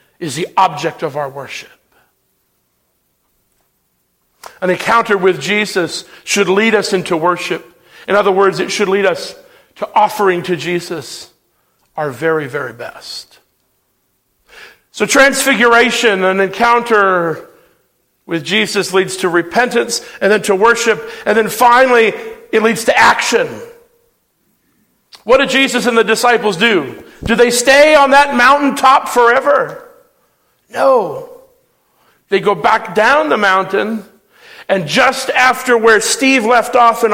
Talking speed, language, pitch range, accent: 130 wpm, English, 195-265 Hz, American